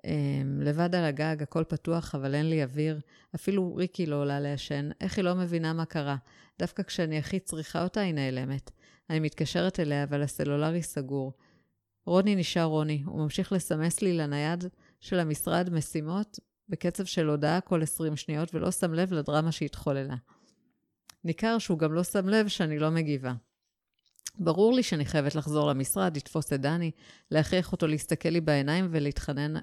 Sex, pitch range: female, 145-180 Hz